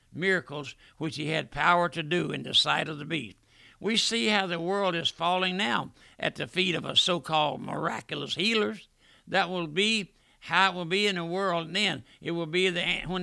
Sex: male